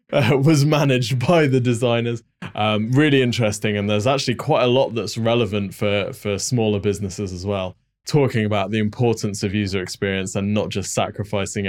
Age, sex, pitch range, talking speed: 20-39, male, 105-125 Hz, 175 wpm